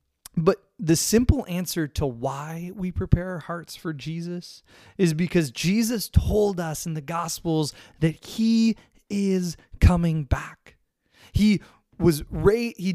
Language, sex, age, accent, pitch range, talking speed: English, male, 30-49, American, 155-195 Hz, 125 wpm